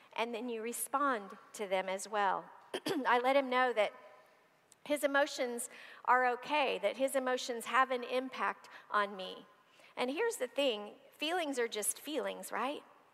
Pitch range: 210-250 Hz